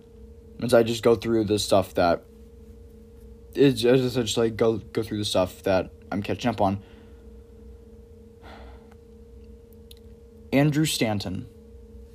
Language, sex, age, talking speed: English, male, 20-39, 120 wpm